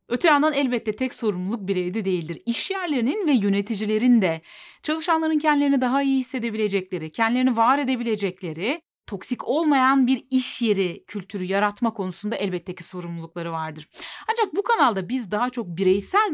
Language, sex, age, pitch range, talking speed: Turkish, female, 30-49, 195-265 Hz, 145 wpm